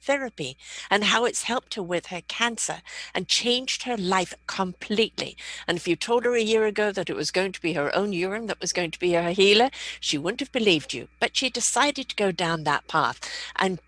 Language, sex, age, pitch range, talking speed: English, female, 50-69, 165-210 Hz, 225 wpm